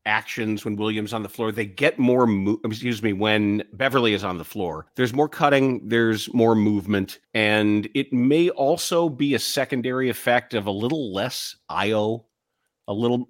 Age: 40-59